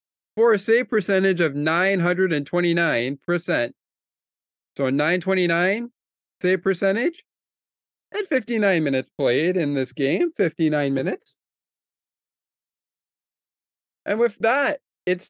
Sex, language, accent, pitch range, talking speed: male, English, American, 160-250 Hz, 90 wpm